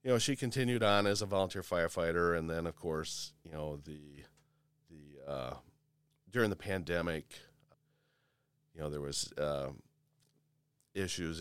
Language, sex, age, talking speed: English, male, 40-59, 140 wpm